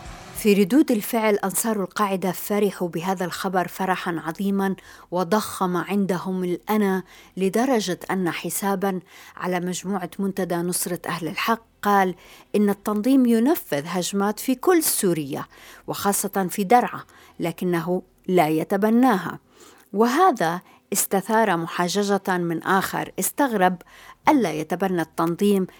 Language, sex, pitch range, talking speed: Arabic, female, 175-210 Hz, 105 wpm